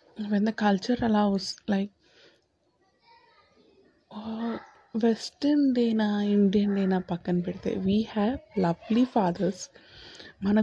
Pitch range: 195-240 Hz